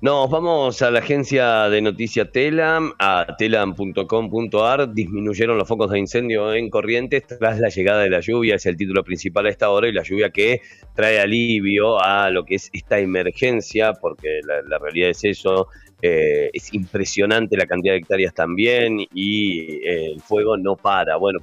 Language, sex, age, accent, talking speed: Spanish, male, 40-59, Argentinian, 175 wpm